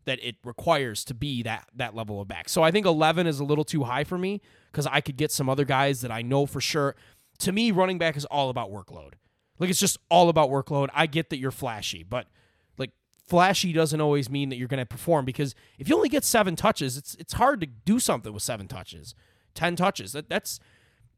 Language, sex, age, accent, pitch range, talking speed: English, male, 20-39, American, 125-170 Hz, 235 wpm